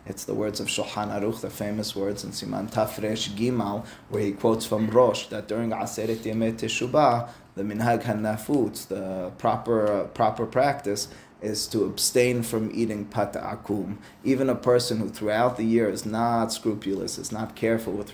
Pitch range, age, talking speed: 105-125 Hz, 20-39, 170 wpm